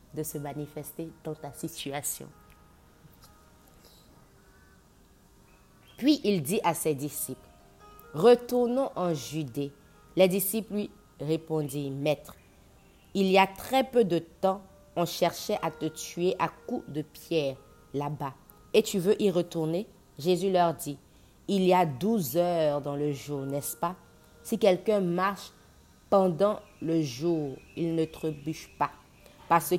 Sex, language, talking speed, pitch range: female, French, 140 wpm, 145-180 Hz